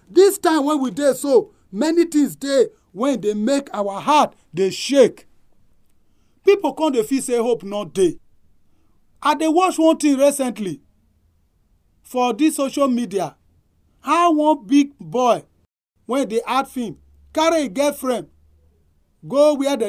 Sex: male